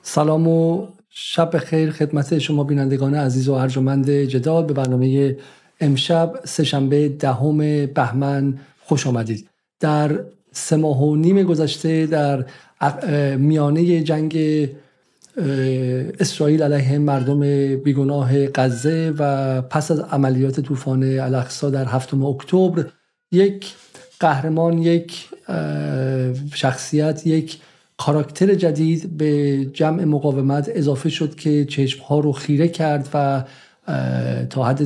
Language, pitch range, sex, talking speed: Persian, 135-155 Hz, male, 105 wpm